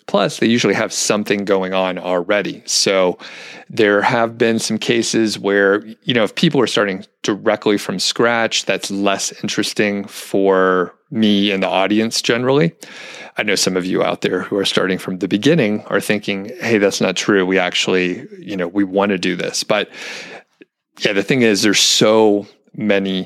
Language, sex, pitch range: English, male, 95-105 Hz